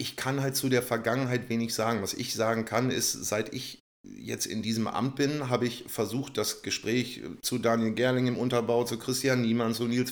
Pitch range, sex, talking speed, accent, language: 115-130 Hz, male, 210 wpm, German, German